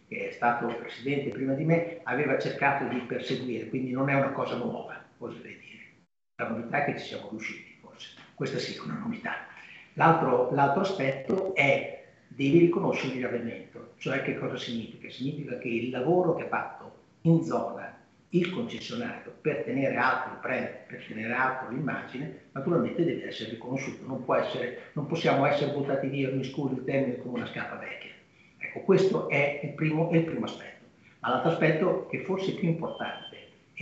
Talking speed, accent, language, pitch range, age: 175 wpm, native, Italian, 125-170 Hz, 50-69